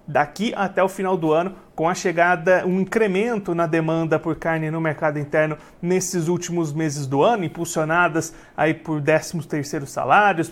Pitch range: 165-195 Hz